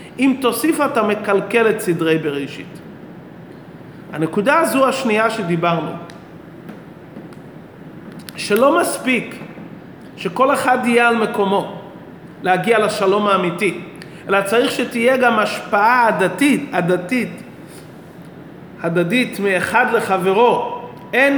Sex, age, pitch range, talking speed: male, 30-49, 185-235 Hz, 90 wpm